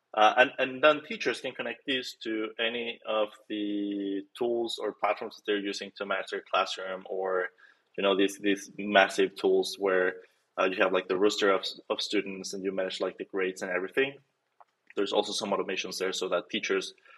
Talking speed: 190 wpm